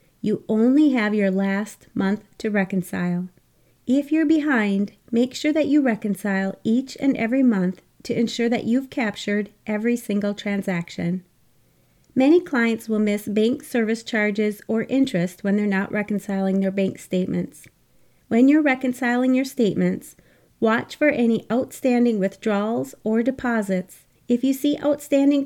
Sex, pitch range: female, 200-250 Hz